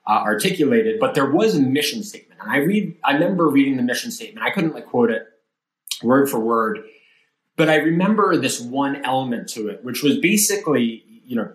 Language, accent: English, American